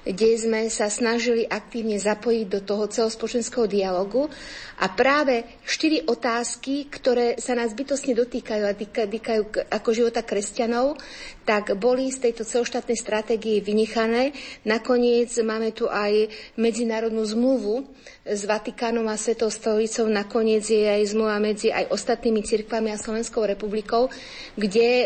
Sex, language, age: female, Slovak, 50-69